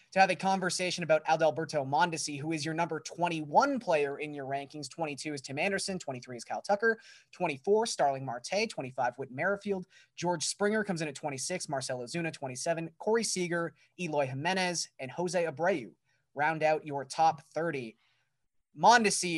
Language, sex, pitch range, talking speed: English, male, 140-180 Hz, 160 wpm